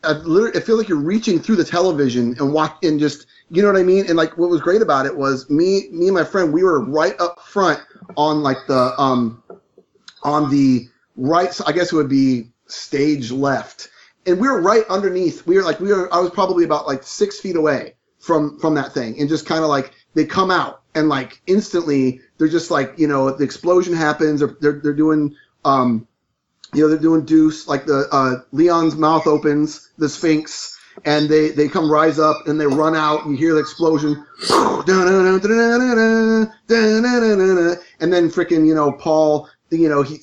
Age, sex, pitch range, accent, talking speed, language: 30-49, male, 145-170 Hz, American, 195 wpm, English